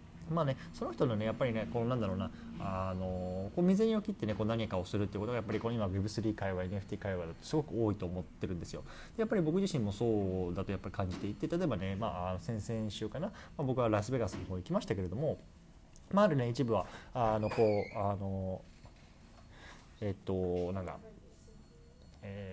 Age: 20-39